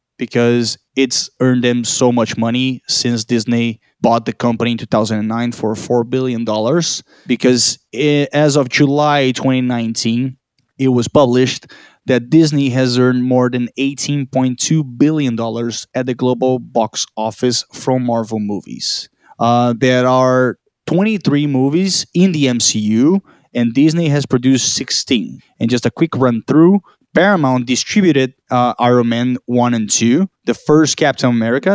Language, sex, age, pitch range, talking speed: Spanish, male, 20-39, 120-145 Hz, 135 wpm